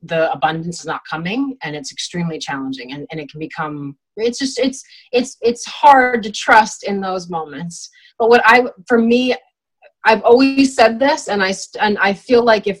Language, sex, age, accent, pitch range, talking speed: English, female, 30-49, American, 185-250 Hz, 190 wpm